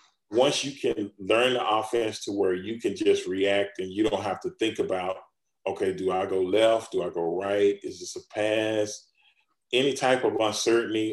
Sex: male